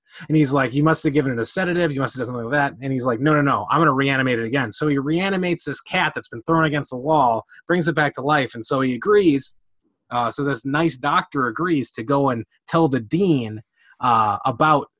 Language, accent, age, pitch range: English, American, 30-49, 125-160 Hz